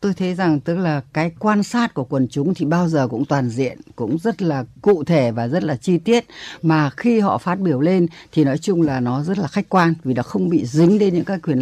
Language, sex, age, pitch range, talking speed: Vietnamese, female, 60-79, 145-195 Hz, 265 wpm